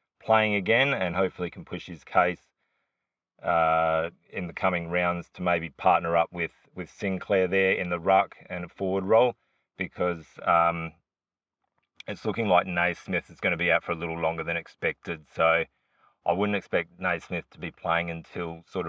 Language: English